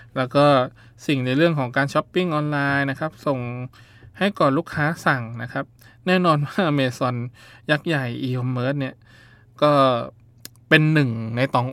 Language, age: Thai, 20-39